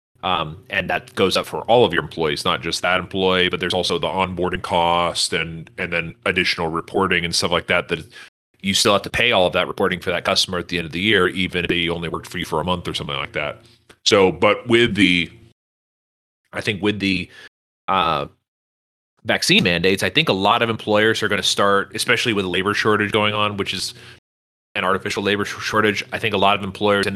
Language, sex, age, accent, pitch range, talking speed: English, male, 30-49, American, 90-105 Hz, 230 wpm